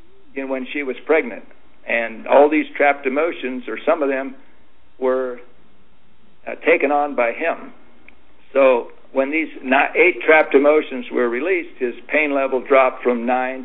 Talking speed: 150 wpm